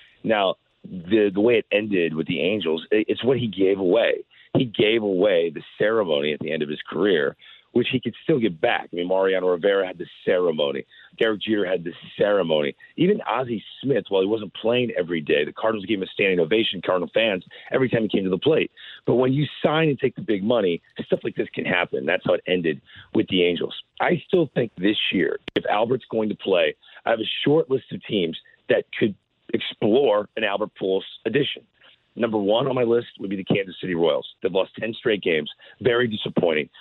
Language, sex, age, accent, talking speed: English, male, 40-59, American, 215 wpm